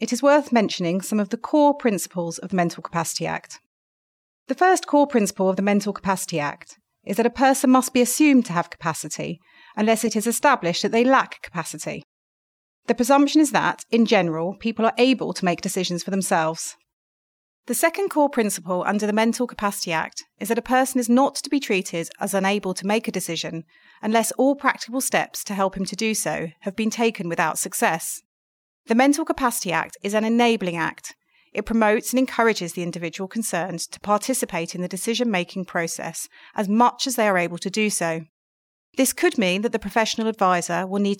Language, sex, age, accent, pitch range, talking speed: English, female, 30-49, British, 180-240 Hz, 195 wpm